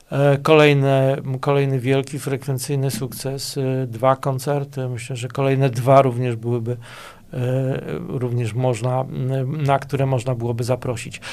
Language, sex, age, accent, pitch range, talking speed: Polish, male, 40-59, native, 130-145 Hz, 105 wpm